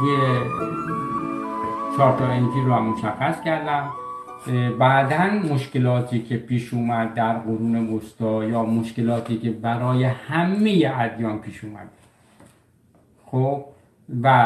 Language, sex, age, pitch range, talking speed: Persian, male, 60-79, 110-140 Hz, 95 wpm